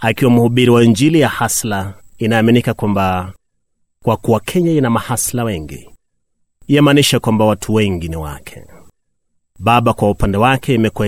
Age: 30-49